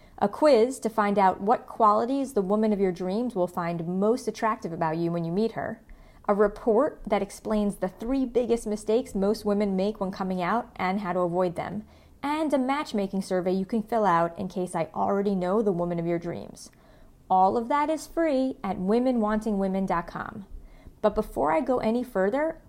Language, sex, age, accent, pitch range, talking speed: English, female, 30-49, American, 185-230 Hz, 190 wpm